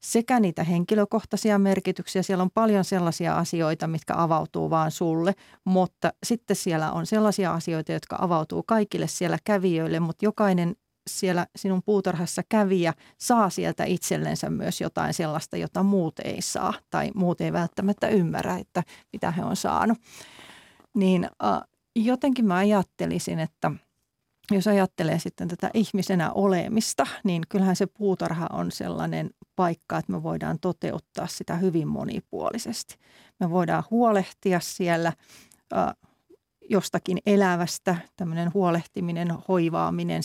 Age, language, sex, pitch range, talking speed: 40-59, Finnish, female, 170-200 Hz, 125 wpm